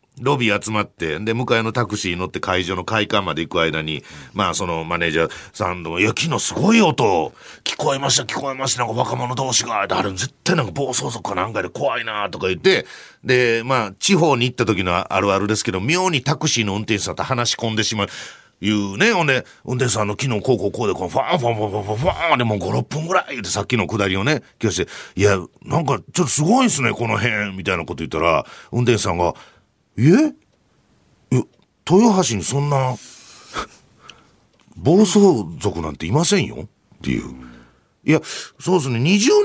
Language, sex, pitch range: Japanese, male, 95-140 Hz